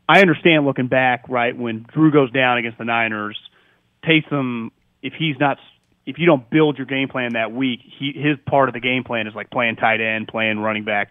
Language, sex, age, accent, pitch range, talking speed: English, male, 30-49, American, 115-150 Hz, 210 wpm